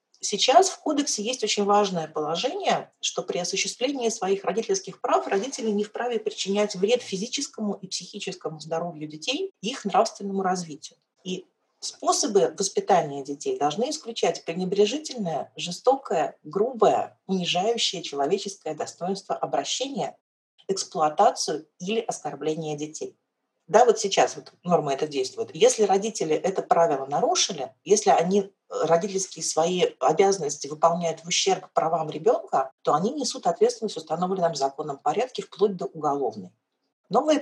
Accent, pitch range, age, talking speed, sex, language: native, 165-240 Hz, 40-59, 125 wpm, female, Russian